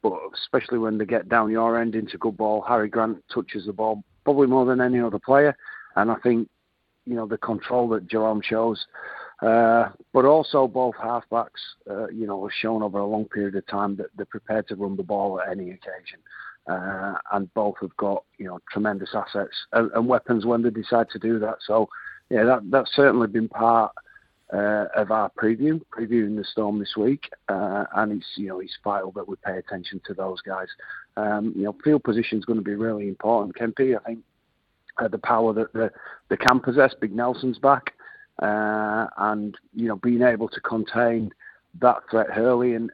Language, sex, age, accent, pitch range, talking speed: English, male, 40-59, British, 105-120 Hz, 200 wpm